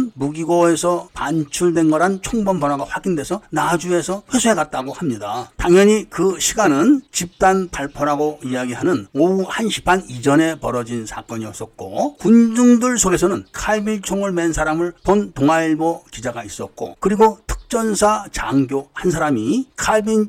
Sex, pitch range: male, 150-200 Hz